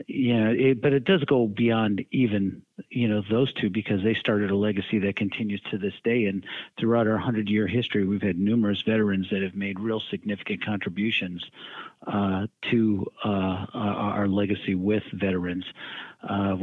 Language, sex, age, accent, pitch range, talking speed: English, male, 50-69, American, 100-115 Hz, 160 wpm